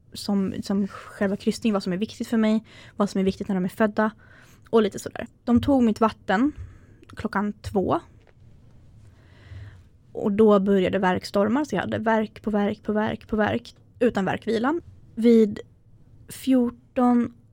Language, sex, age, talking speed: Swedish, female, 20-39, 160 wpm